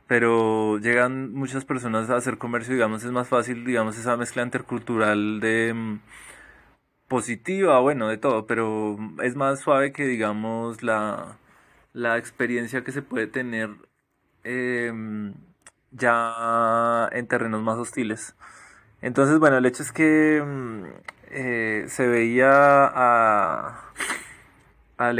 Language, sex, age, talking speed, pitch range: Spanish, male, 20-39, 120 wpm, 110-125 Hz